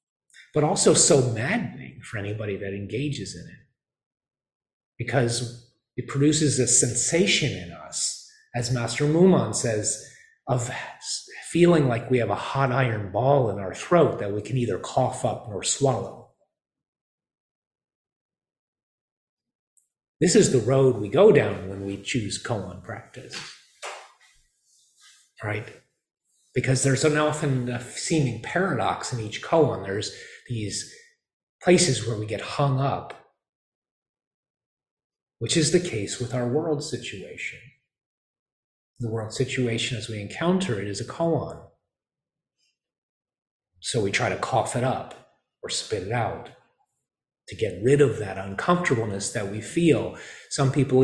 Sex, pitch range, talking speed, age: male, 110-150 Hz, 130 wpm, 30-49